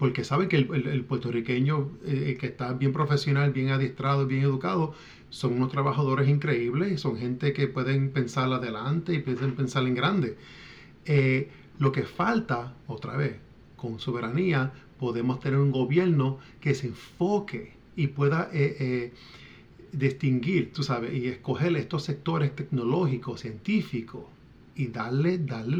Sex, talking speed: male, 145 wpm